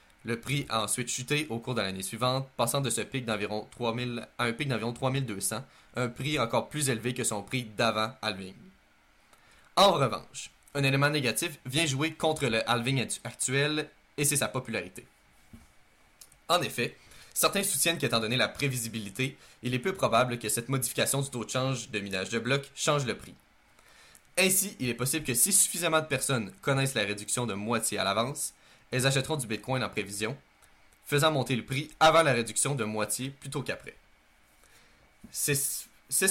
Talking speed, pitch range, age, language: 175 wpm, 115-145 Hz, 20-39, French